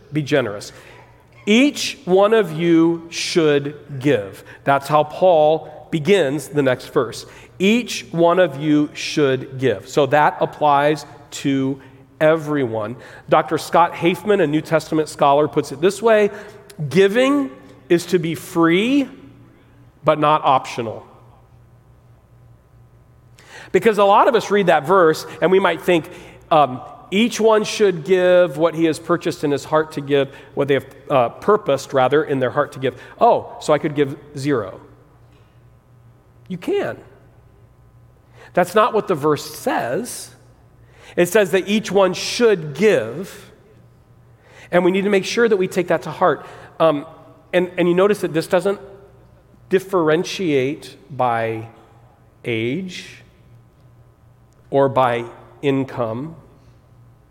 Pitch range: 130-180 Hz